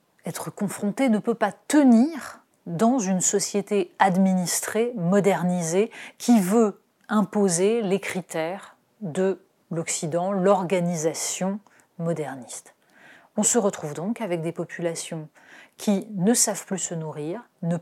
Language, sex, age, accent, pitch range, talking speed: French, female, 30-49, French, 175-225 Hz, 115 wpm